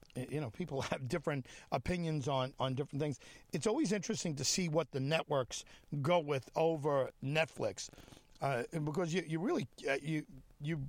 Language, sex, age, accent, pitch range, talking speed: English, male, 50-69, American, 130-165 Hz, 170 wpm